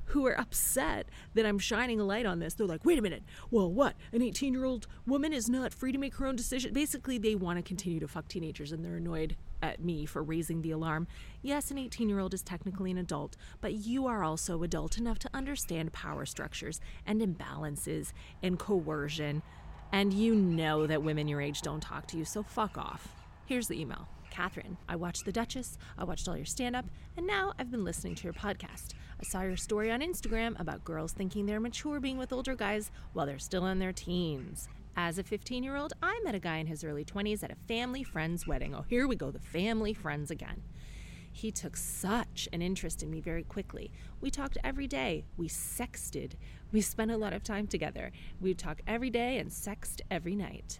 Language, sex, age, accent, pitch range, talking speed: English, female, 30-49, American, 165-240 Hz, 215 wpm